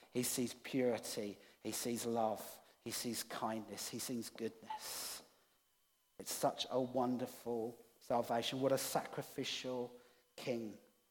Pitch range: 125-190 Hz